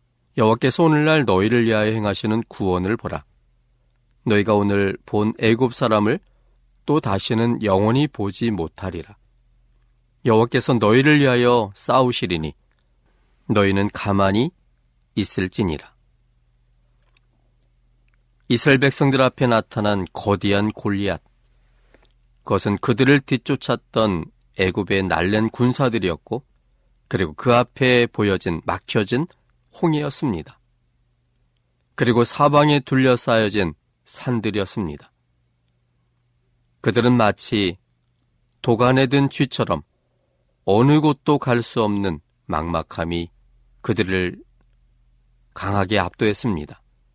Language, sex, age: Korean, male, 40-59